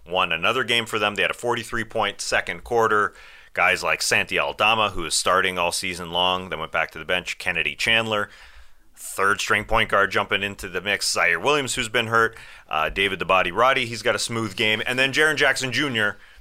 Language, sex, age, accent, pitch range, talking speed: English, male, 30-49, American, 95-120 Hz, 200 wpm